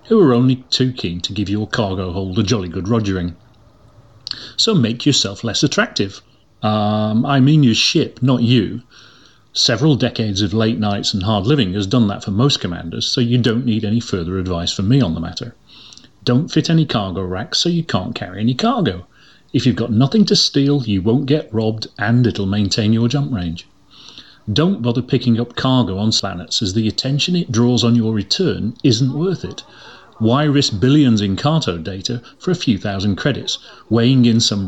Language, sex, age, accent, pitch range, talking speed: English, male, 40-59, British, 105-130 Hz, 190 wpm